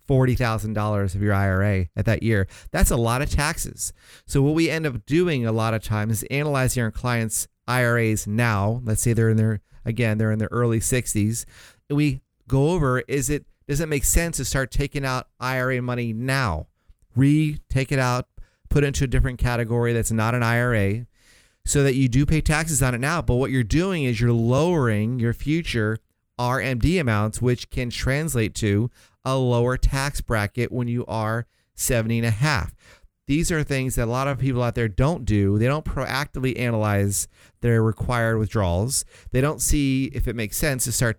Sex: male